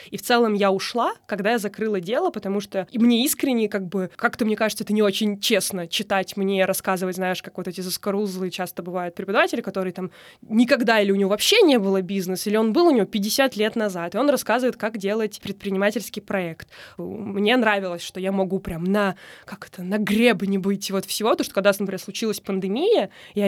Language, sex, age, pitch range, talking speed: Russian, female, 20-39, 190-225 Hz, 200 wpm